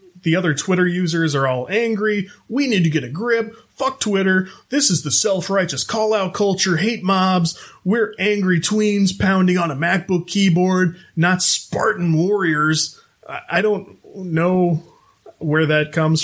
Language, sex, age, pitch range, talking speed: English, male, 30-49, 140-185 Hz, 150 wpm